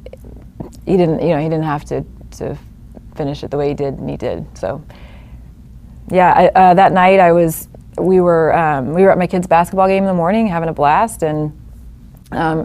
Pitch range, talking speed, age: 155-180 Hz, 205 wpm, 30-49